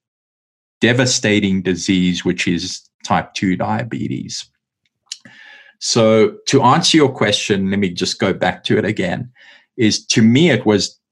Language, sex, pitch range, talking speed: English, male, 105-130 Hz, 135 wpm